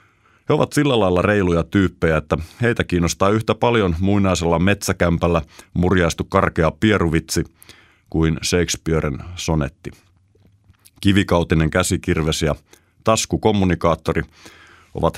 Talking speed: 95 wpm